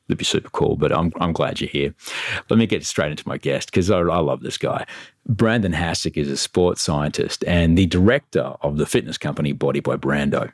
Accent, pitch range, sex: Australian, 85-115 Hz, male